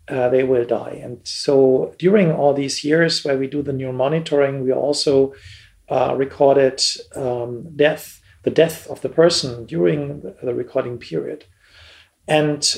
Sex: male